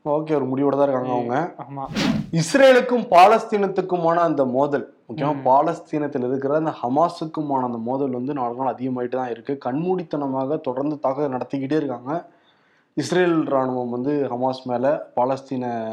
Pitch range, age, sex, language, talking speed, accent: 135-170 Hz, 20-39, male, Tamil, 125 wpm, native